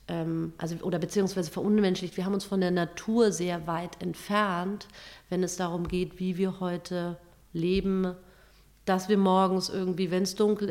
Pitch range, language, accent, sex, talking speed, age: 180-200 Hz, English, German, female, 155 wpm, 30-49